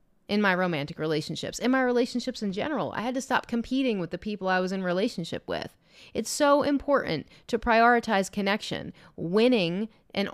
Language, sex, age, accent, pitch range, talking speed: English, female, 30-49, American, 175-220 Hz, 175 wpm